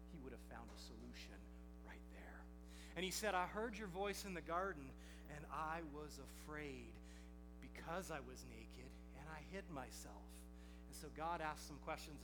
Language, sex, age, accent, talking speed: English, male, 40-59, American, 175 wpm